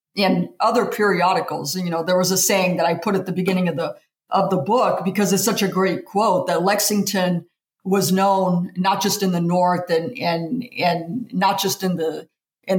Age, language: 50-69, English